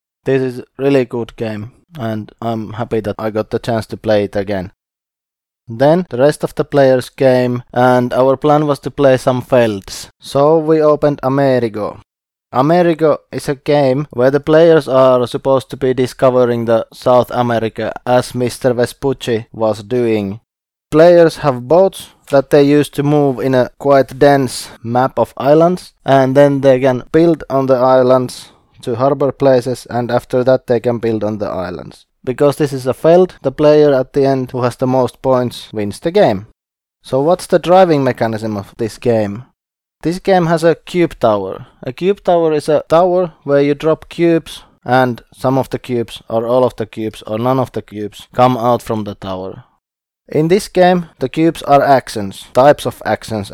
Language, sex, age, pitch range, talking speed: English, male, 20-39, 115-145 Hz, 185 wpm